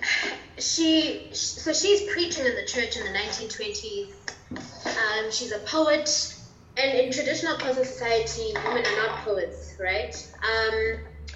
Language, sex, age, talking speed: English, female, 20-39, 130 wpm